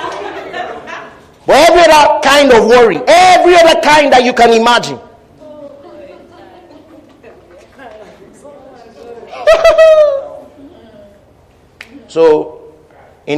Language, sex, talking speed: English, male, 65 wpm